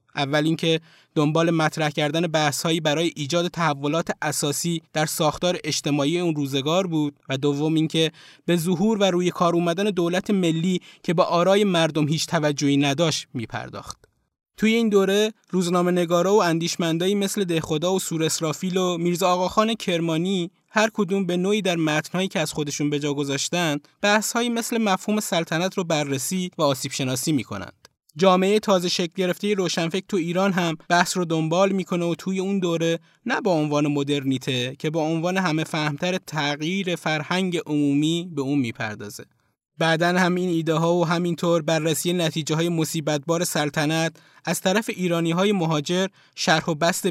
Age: 20-39